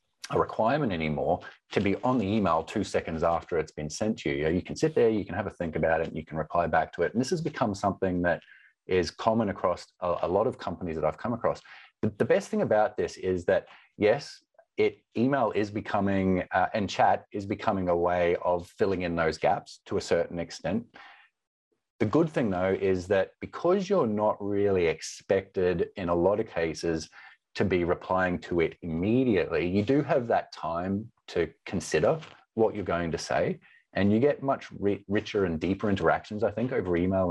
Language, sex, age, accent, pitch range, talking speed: English, male, 30-49, Australian, 90-110 Hz, 205 wpm